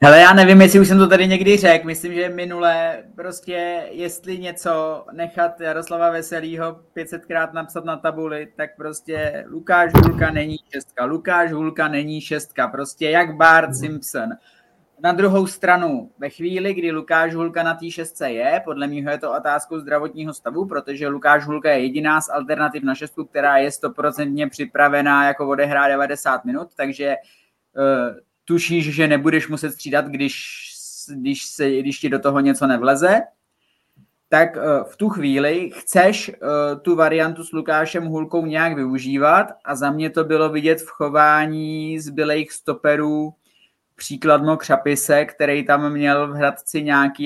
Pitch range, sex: 145-165 Hz, male